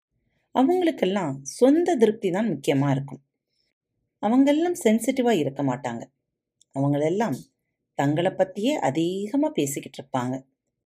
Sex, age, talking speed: female, 30-49, 95 wpm